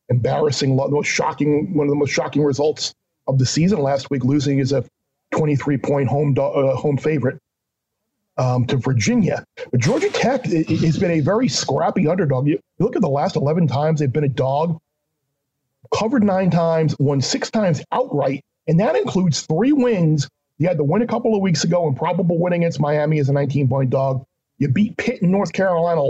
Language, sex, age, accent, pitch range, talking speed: English, male, 40-59, American, 140-180 Hz, 190 wpm